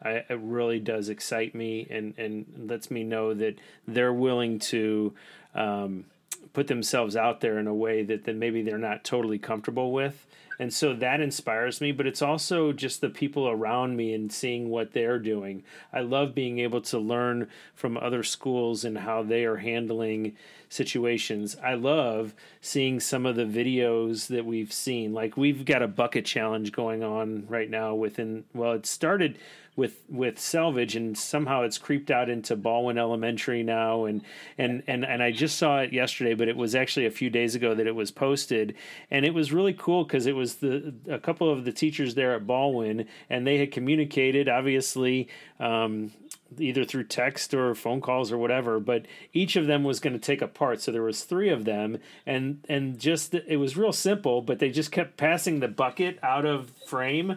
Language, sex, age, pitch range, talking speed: English, male, 30-49, 115-140 Hz, 190 wpm